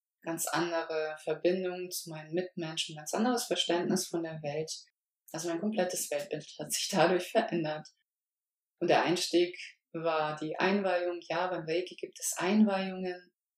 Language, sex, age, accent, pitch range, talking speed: German, female, 20-39, German, 165-200 Hz, 140 wpm